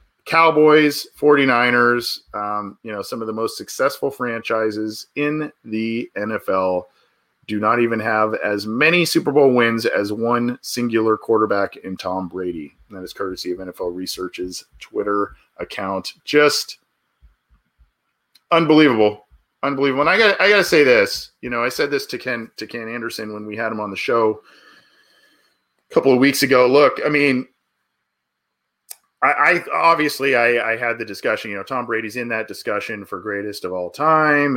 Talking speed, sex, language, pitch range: 165 wpm, male, English, 100-140 Hz